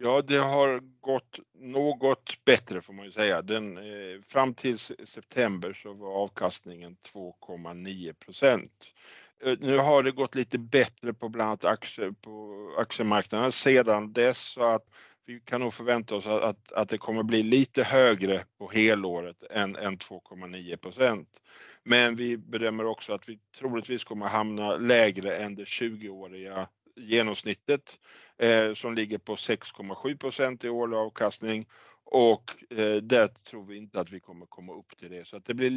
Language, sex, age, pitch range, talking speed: Swedish, male, 50-69, 100-125 Hz, 155 wpm